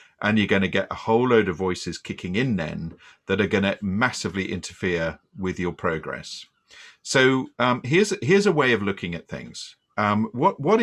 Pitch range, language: 95-125 Hz, English